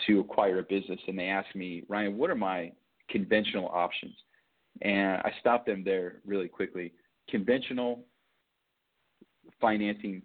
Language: English